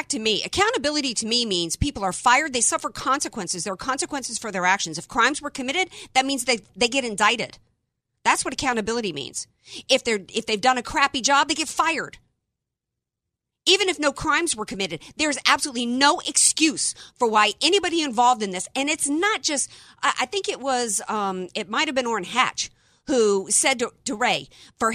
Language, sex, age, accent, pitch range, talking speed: English, female, 50-69, American, 220-300 Hz, 195 wpm